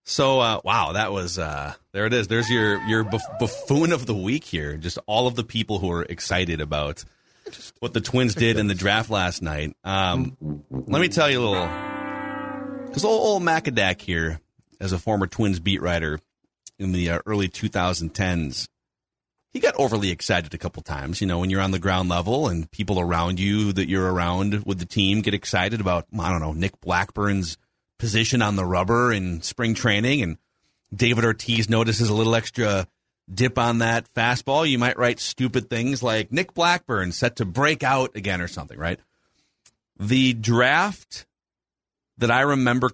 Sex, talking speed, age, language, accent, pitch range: male, 180 wpm, 30-49, English, American, 90-125 Hz